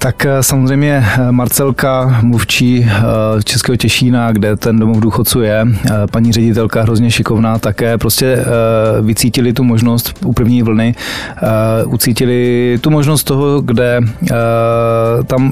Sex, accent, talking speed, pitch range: male, native, 120 wpm, 110-130 Hz